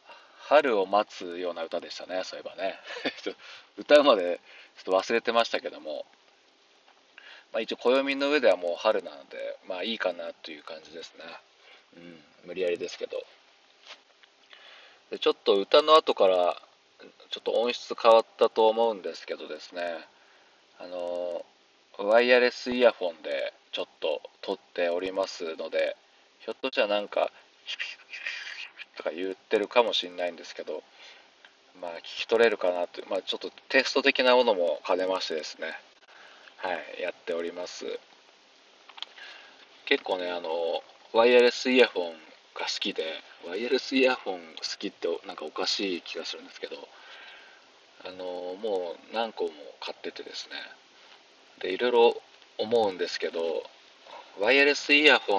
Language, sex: Japanese, male